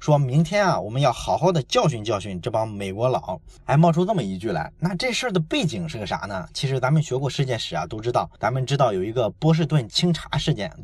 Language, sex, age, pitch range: Chinese, male, 20-39, 125-165 Hz